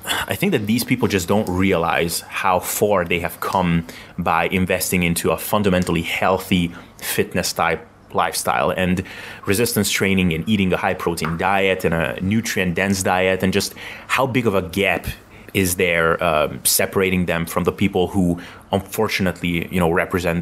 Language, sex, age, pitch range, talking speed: English, male, 30-49, 90-105 Hz, 155 wpm